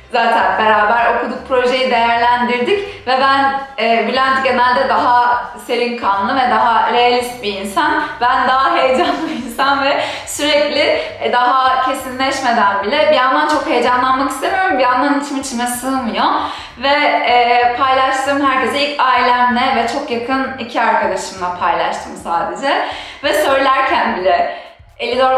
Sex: female